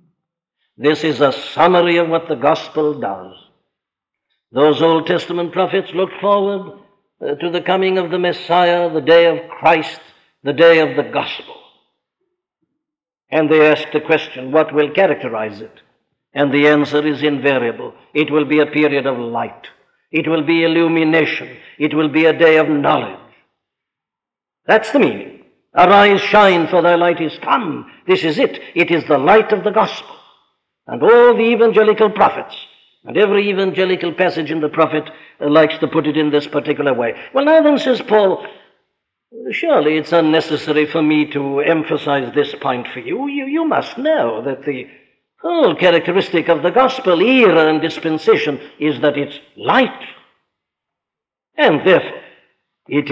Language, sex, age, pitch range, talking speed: English, male, 60-79, 150-190 Hz, 160 wpm